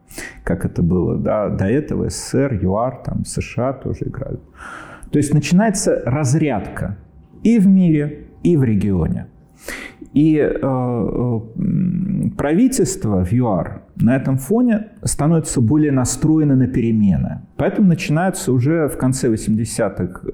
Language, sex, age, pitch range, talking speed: Russian, male, 40-59, 105-150 Hz, 125 wpm